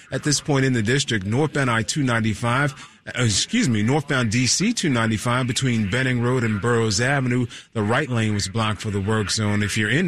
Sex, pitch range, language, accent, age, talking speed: male, 115-145 Hz, English, American, 30-49, 185 wpm